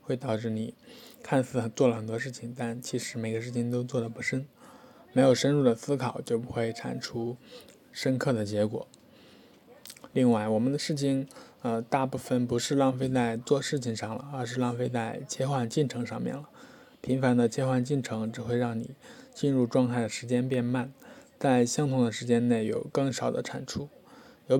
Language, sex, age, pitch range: Chinese, male, 20-39, 115-130 Hz